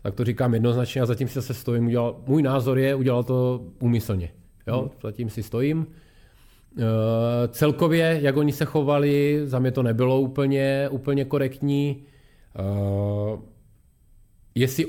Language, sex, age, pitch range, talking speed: Czech, male, 30-49, 115-140 Hz, 125 wpm